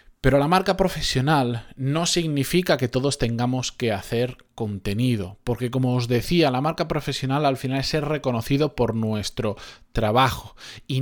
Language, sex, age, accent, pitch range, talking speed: Spanish, male, 20-39, Spanish, 120-150 Hz, 150 wpm